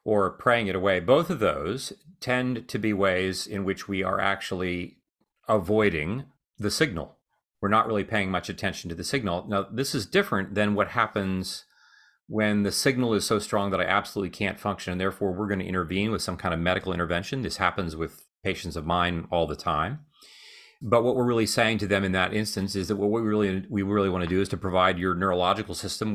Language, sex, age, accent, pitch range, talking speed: English, male, 40-59, American, 95-115 Hz, 215 wpm